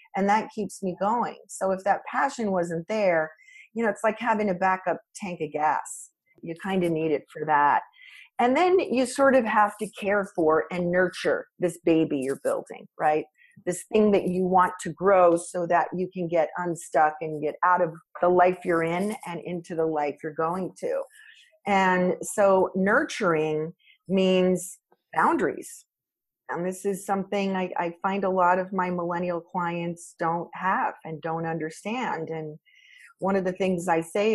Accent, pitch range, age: American, 170-205 Hz, 40-59